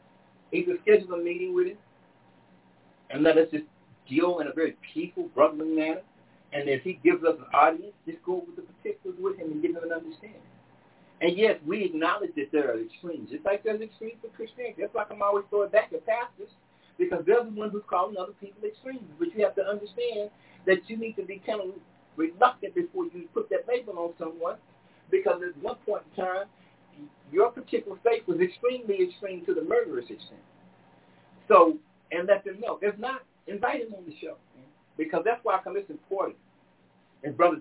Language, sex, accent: English, male, American